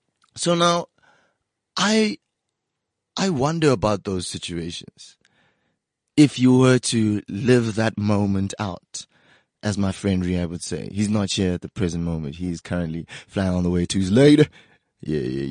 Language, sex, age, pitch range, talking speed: English, male, 20-39, 95-135 Hz, 155 wpm